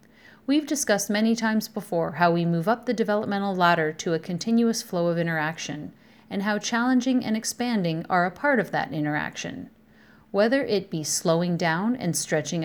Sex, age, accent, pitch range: female, 40-59, American, 170-230 Hz